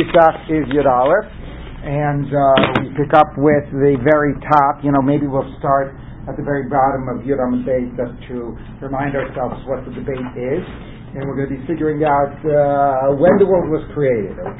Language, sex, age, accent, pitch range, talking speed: English, male, 50-69, American, 135-165 Hz, 180 wpm